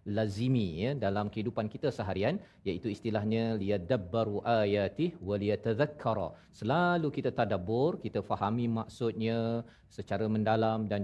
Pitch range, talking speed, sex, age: 110-130 Hz, 120 wpm, male, 40-59